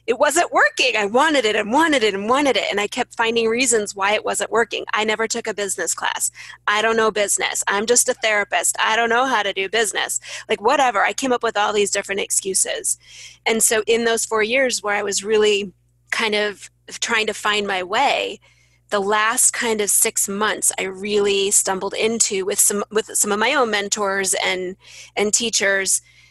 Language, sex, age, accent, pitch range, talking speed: English, female, 30-49, American, 195-230 Hz, 205 wpm